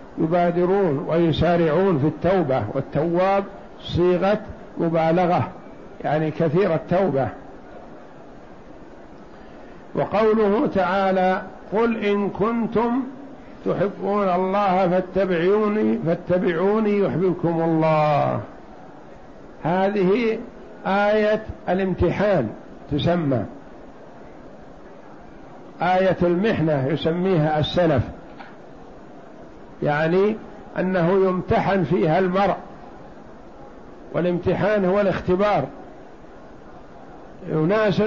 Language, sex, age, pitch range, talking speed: Arabic, male, 60-79, 170-200 Hz, 60 wpm